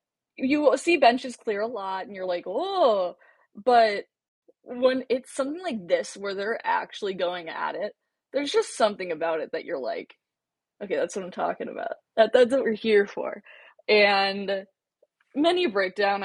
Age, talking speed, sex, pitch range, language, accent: 20-39, 170 wpm, female, 190-245 Hz, English, American